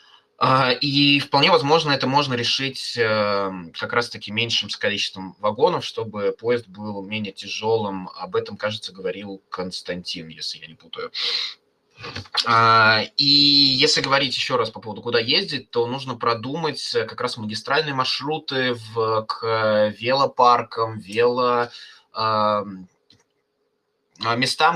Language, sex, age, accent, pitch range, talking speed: Russian, male, 20-39, native, 105-135 Hz, 120 wpm